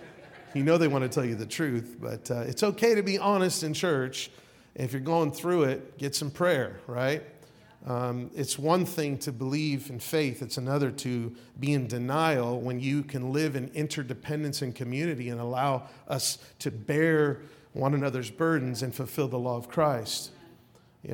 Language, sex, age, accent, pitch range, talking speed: English, male, 40-59, American, 130-160 Hz, 180 wpm